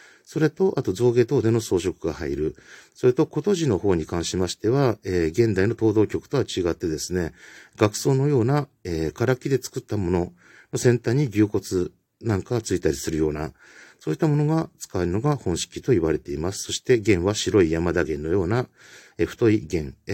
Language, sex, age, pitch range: Japanese, male, 50-69, 85-120 Hz